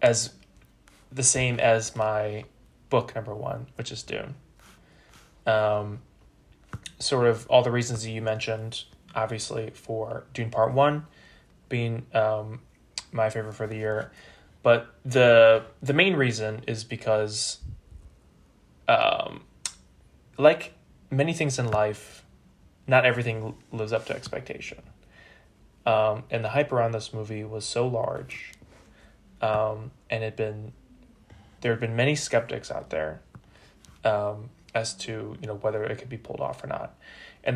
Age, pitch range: 20-39, 110-120 Hz